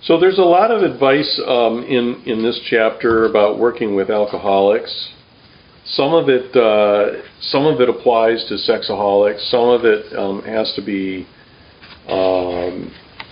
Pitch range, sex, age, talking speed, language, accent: 100-120 Hz, male, 50-69, 150 wpm, English, American